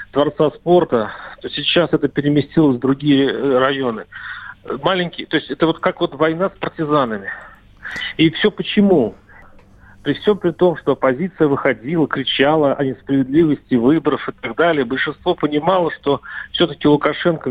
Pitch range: 125-155 Hz